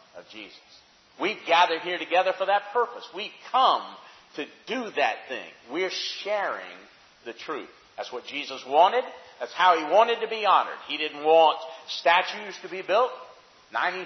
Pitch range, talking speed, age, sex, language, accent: 170-245 Hz, 160 wpm, 50-69, male, English, American